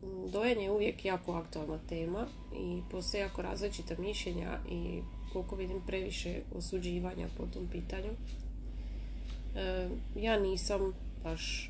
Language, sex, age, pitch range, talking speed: Croatian, female, 30-49, 155-195 Hz, 120 wpm